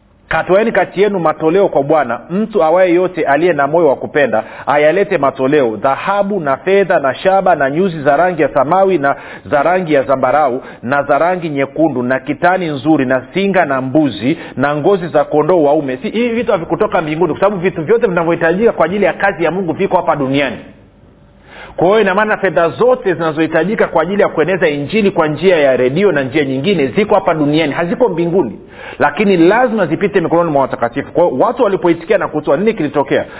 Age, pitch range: 40-59, 140-190 Hz